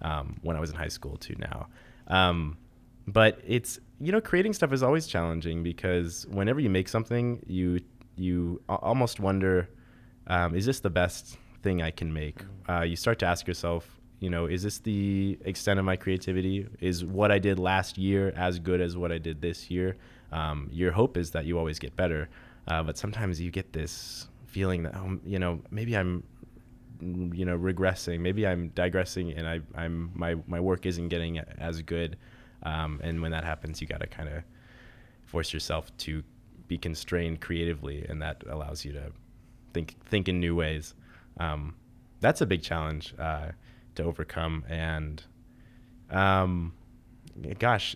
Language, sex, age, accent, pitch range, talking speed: English, male, 20-39, American, 85-105 Hz, 175 wpm